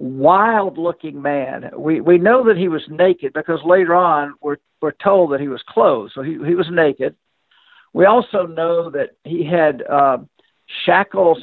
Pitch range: 145-180 Hz